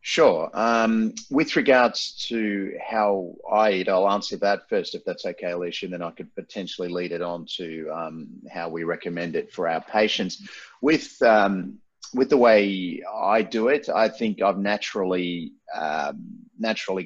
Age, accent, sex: 30-49, Australian, male